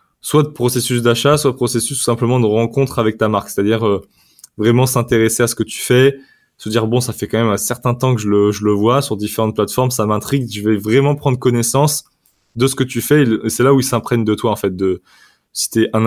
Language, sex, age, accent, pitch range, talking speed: French, male, 20-39, French, 105-120 Hz, 255 wpm